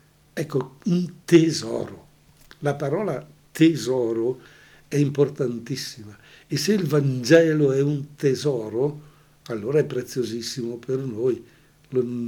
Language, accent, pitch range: Italian, native, 120-145 Hz